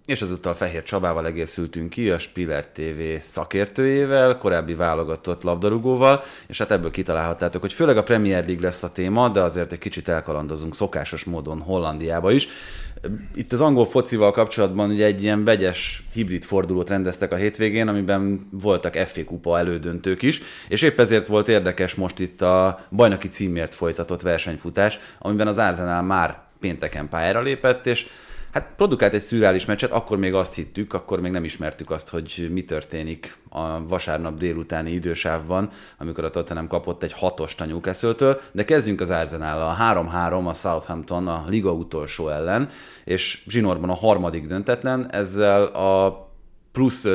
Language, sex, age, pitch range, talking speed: Hungarian, male, 30-49, 85-105 Hz, 155 wpm